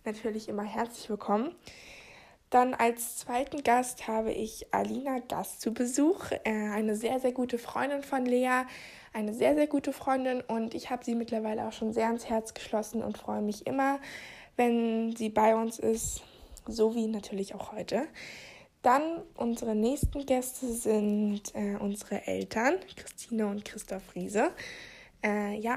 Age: 20-39